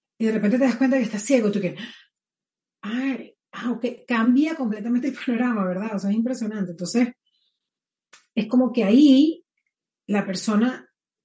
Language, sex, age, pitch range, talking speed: Spanish, female, 40-59, 195-250 Hz, 160 wpm